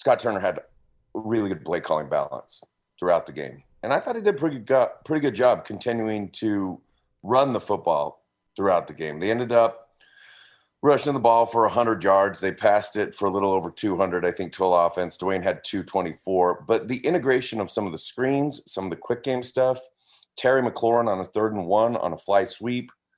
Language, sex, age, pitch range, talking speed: English, male, 30-49, 95-120 Hz, 200 wpm